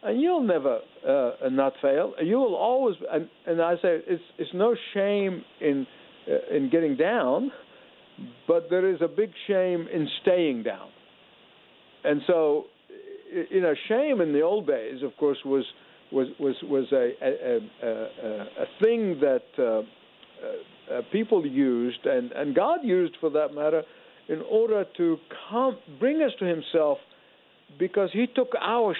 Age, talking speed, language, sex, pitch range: 60-79, 155 wpm, English, male, 150-250 Hz